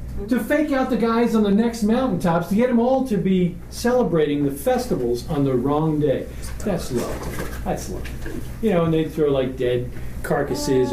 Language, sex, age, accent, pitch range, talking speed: English, male, 40-59, American, 125-180 Hz, 185 wpm